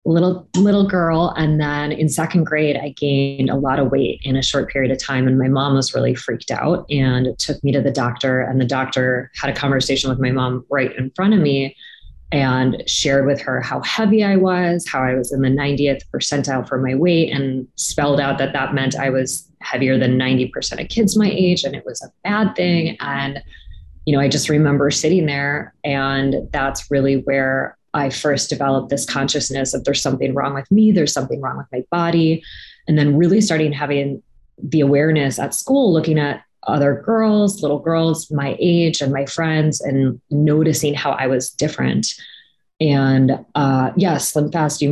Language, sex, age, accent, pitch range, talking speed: English, female, 20-39, American, 135-160 Hz, 195 wpm